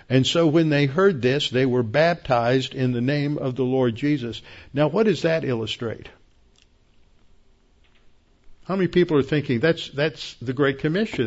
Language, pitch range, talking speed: English, 120-145 Hz, 165 wpm